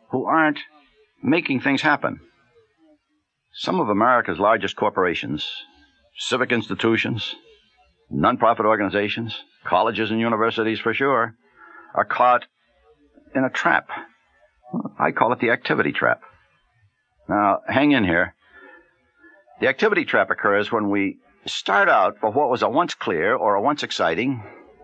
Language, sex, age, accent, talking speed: English, male, 60-79, American, 125 wpm